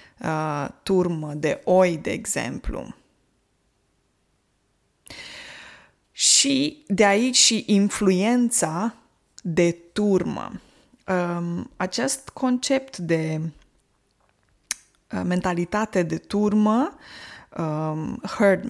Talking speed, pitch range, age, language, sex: 60 wpm, 170-220 Hz, 20-39, Romanian, female